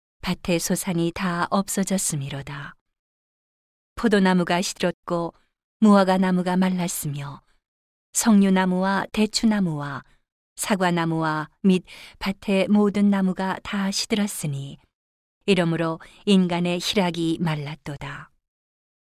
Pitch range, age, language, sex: 165-200 Hz, 40-59, Korean, female